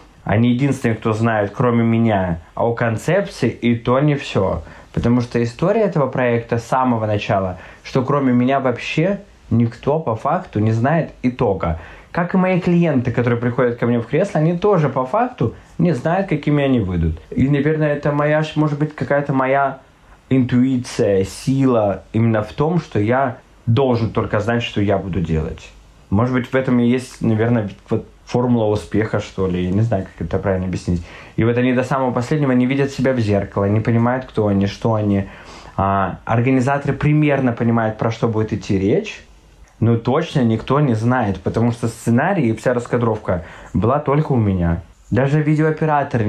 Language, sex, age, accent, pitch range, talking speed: Russian, male, 20-39, native, 100-135 Hz, 170 wpm